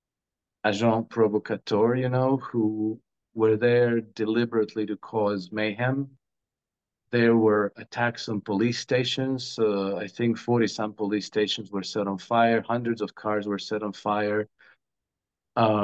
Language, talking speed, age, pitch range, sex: English, 135 wpm, 50-69, 105-120 Hz, male